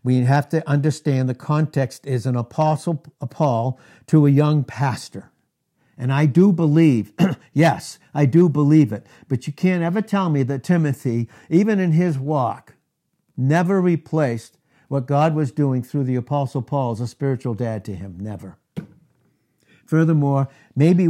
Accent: American